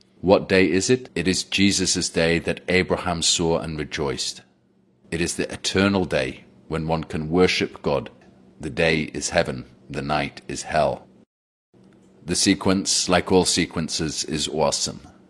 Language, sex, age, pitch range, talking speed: English, male, 40-59, 75-90 Hz, 150 wpm